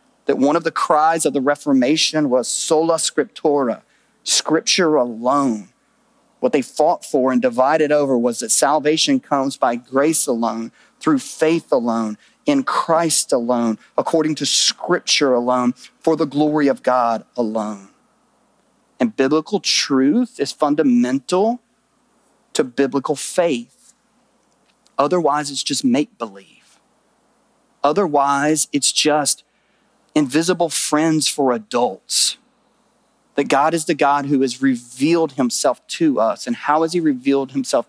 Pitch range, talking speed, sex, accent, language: 135-180 Hz, 125 wpm, male, American, English